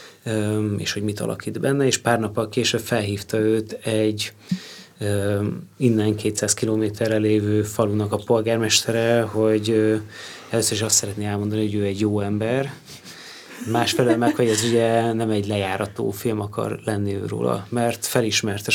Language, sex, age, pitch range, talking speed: Hungarian, male, 30-49, 105-120 Hz, 145 wpm